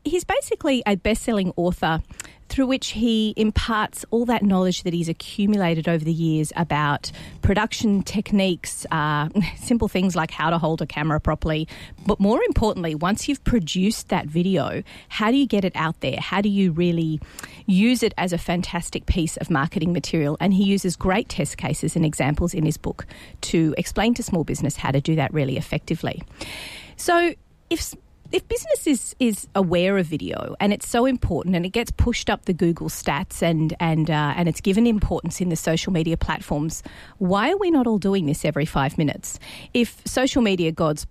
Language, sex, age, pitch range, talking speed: English, female, 40-59, 160-215 Hz, 185 wpm